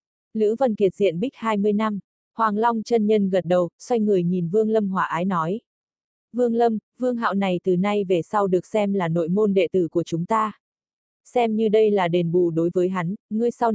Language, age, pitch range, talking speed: Vietnamese, 20-39, 185-225 Hz, 225 wpm